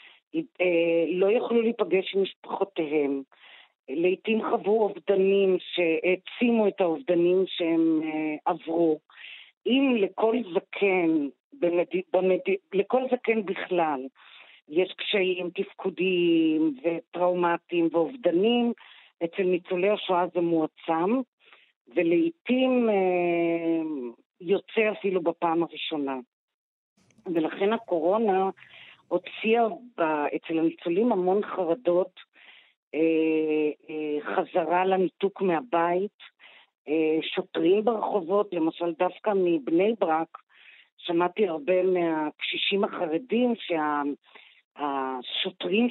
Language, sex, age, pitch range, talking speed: Hebrew, female, 40-59, 165-200 Hz, 70 wpm